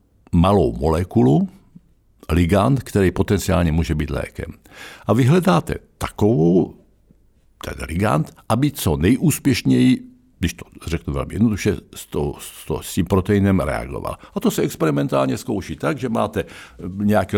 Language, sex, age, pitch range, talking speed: Czech, male, 60-79, 85-130 Hz, 130 wpm